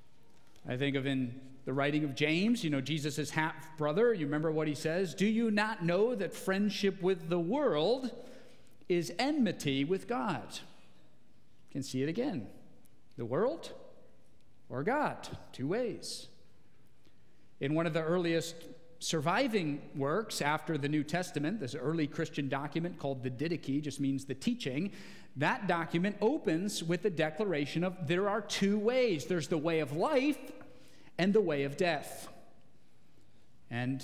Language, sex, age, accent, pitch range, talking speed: English, male, 40-59, American, 150-210 Hz, 150 wpm